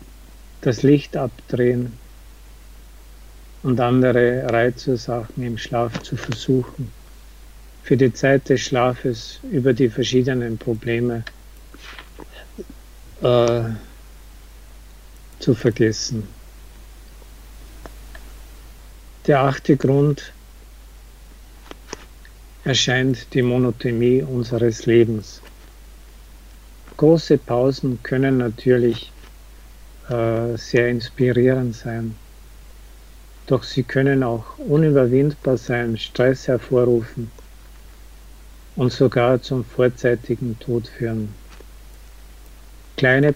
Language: German